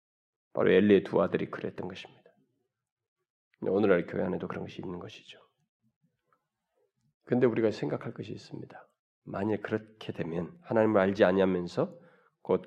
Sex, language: male, Korean